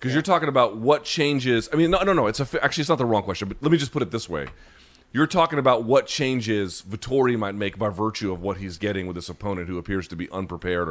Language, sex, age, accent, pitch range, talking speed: English, male, 30-49, American, 100-130 Hz, 260 wpm